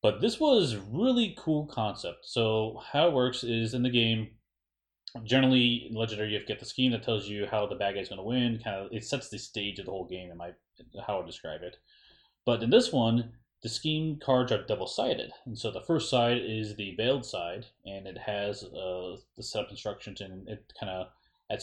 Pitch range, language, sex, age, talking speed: 105-130 Hz, English, male, 30-49, 220 wpm